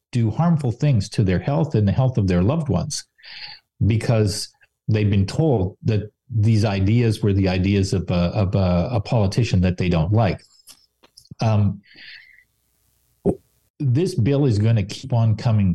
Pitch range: 105-135 Hz